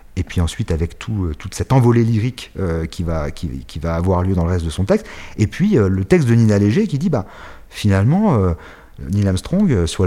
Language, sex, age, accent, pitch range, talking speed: French, male, 40-59, French, 95-130 Hz, 245 wpm